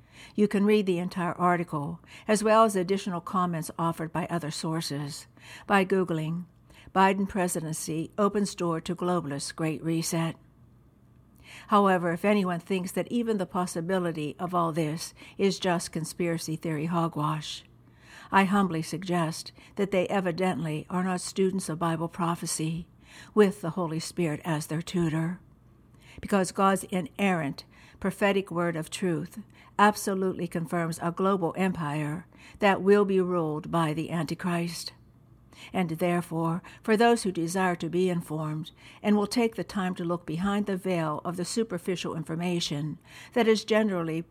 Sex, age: female, 60-79